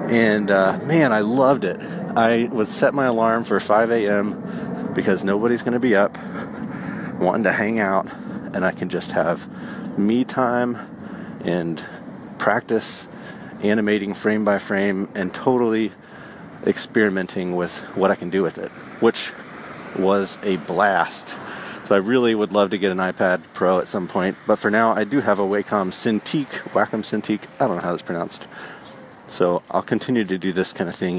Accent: American